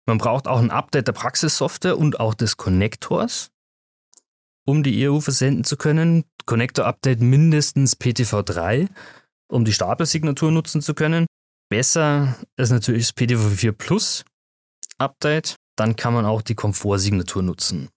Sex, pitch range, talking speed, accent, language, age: male, 105-140 Hz, 135 wpm, German, German, 30-49